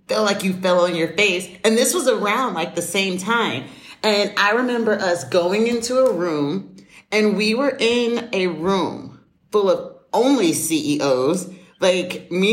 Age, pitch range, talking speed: 40-59, 170-230 Hz, 170 wpm